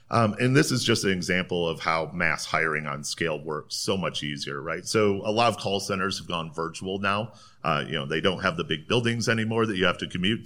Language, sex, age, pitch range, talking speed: English, male, 40-59, 90-110 Hz, 245 wpm